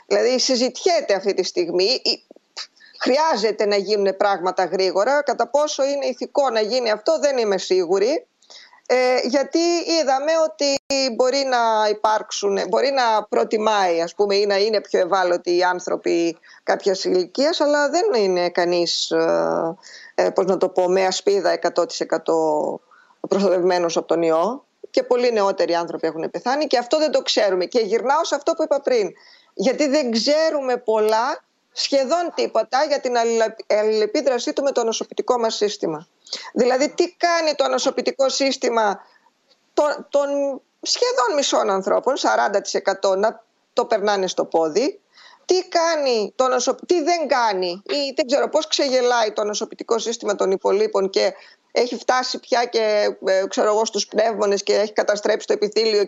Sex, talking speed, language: female, 145 wpm, Greek